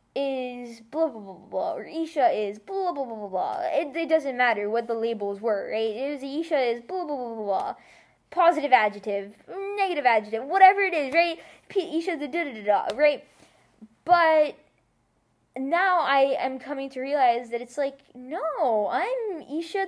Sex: female